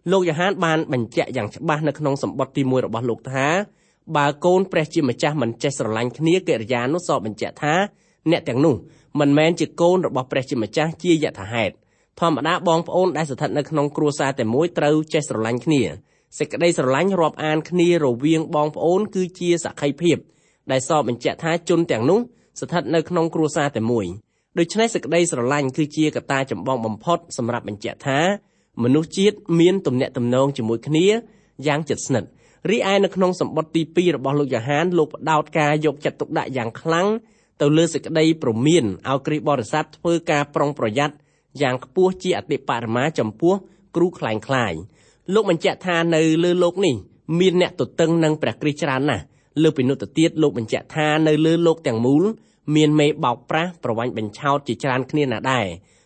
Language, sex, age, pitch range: English, male, 20-39, 135-170 Hz